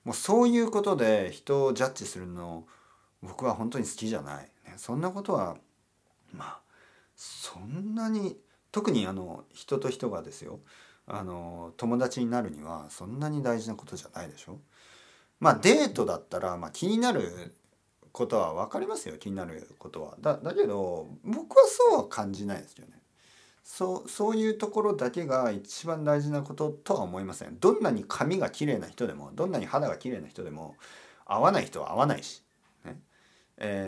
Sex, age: male, 40-59